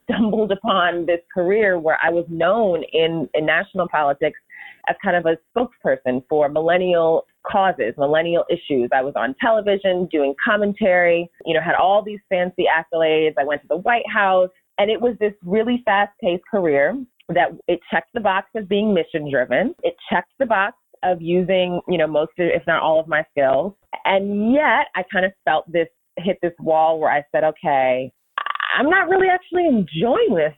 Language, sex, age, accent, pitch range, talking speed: English, female, 30-49, American, 155-200 Hz, 185 wpm